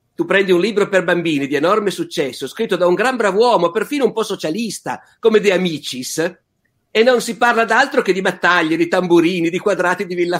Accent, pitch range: native, 150-205 Hz